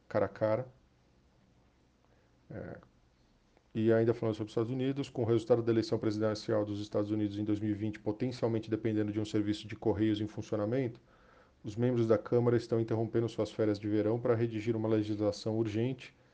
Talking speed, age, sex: 170 wpm, 40-59, male